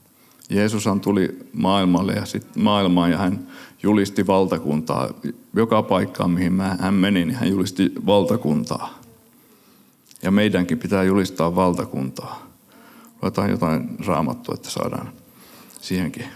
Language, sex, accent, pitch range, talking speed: Finnish, male, native, 90-105 Hz, 110 wpm